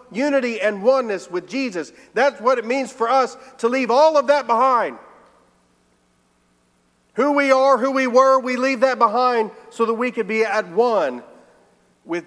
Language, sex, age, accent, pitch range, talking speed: English, male, 40-59, American, 180-240 Hz, 170 wpm